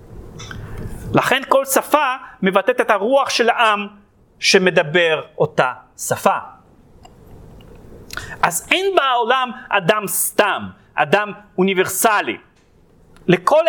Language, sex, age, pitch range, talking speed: Hebrew, male, 40-59, 200-280 Hz, 85 wpm